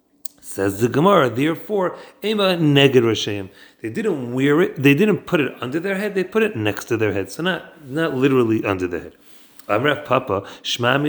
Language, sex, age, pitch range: English, male, 30-49, 120-165 Hz